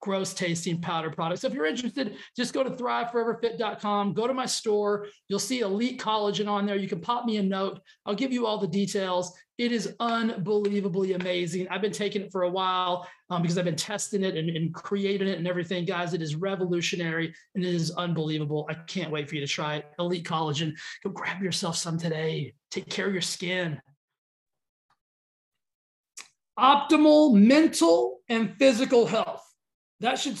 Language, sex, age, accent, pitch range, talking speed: English, male, 30-49, American, 185-235 Hz, 180 wpm